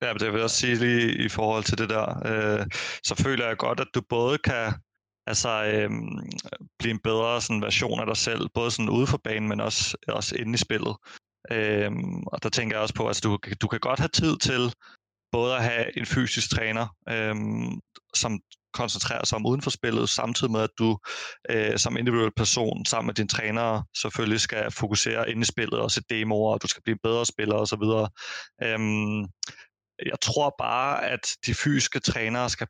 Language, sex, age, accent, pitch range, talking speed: Danish, male, 30-49, native, 110-120 Hz, 200 wpm